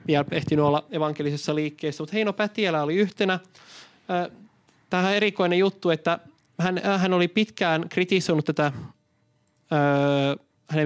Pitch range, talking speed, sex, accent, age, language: 150-195 Hz, 110 wpm, male, native, 20-39, Finnish